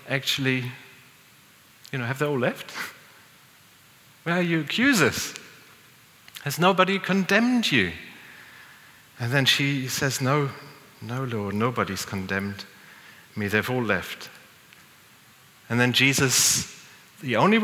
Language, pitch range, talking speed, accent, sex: English, 115-155 Hz, 110 wpm, German, male